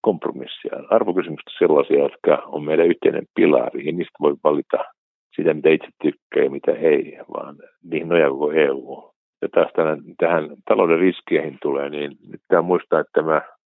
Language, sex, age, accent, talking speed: Finnish, male, 60-79, native, 165 wpm